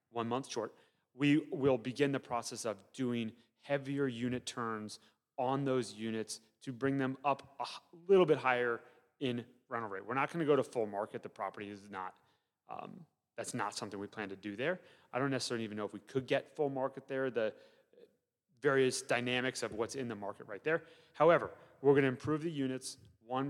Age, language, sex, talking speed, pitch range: 30-49, English, male, 195 wpm, 110-140 Hz